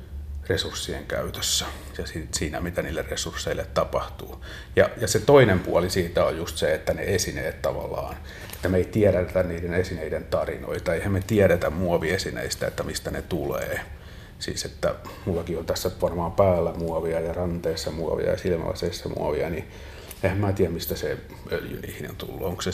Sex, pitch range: male, 85-95 Hz